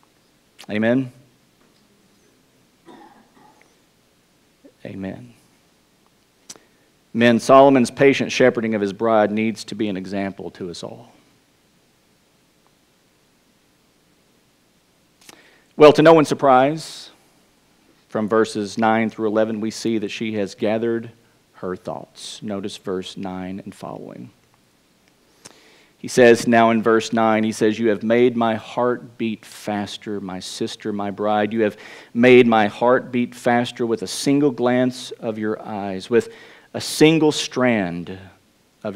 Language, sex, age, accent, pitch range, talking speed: English, male, 40-59, American, 105-140 Hz, 120 wpm